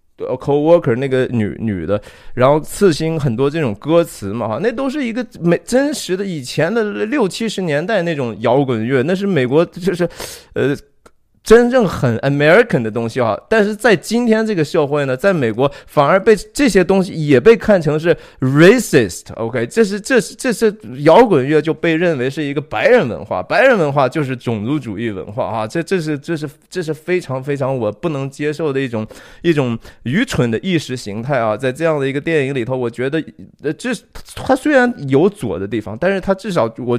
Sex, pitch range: male, 130-195 Hz